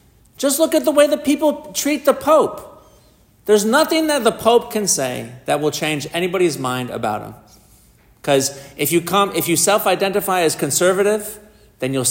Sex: male